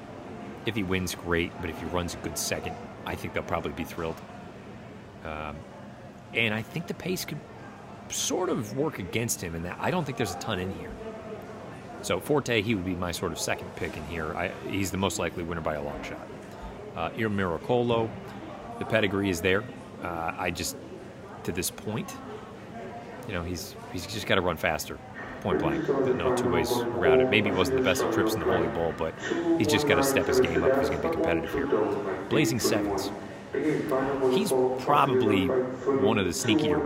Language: English